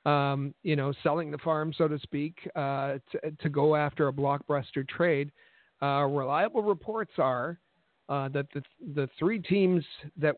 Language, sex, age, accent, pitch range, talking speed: English, male, 50-69, American, 135-165 Hz, 170 wpm